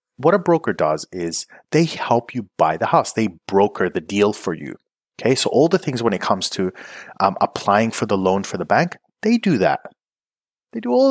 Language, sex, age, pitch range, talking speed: English, male, 30-49, 105-155 Hz, 215 wpm